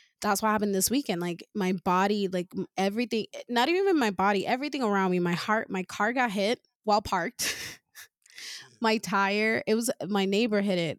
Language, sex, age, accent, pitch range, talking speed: English, female, 20-39, American, 185-220 Hz, 180 wpm